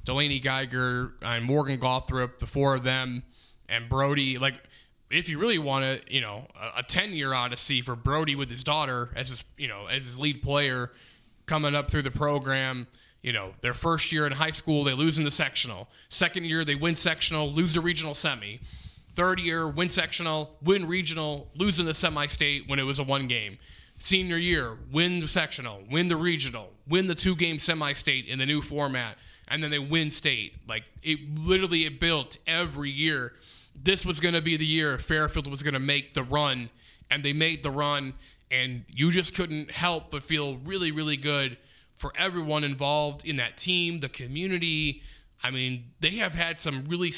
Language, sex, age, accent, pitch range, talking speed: English, male, 20-39, American, 130-165 Hz, 190 wpm